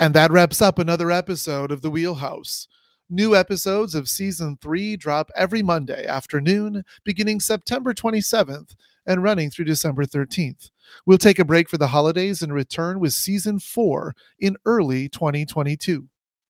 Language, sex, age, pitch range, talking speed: English, male, 40-59, 155-195 Hz, 150 wpm